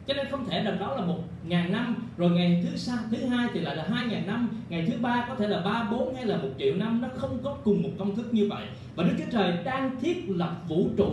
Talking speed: 285 wpm